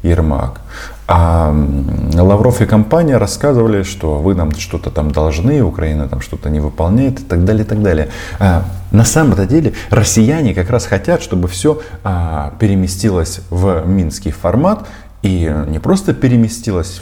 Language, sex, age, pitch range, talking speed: Russian, male, 20-39, 85-105 Hz, 145 wpm